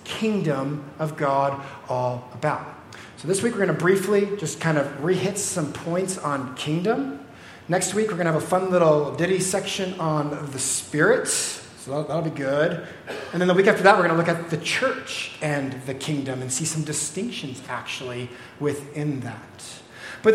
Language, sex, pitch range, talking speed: English, male, 140-185 Hz, 185 wpm